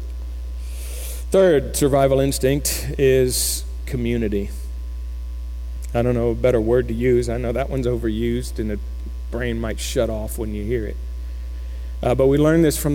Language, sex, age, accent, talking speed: English, male, 50-69, American, 160 wpm